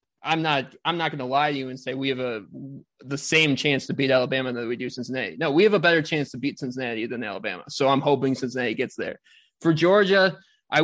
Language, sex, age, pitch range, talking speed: English, male, 20-39, 130-165 Hz, 245 wpm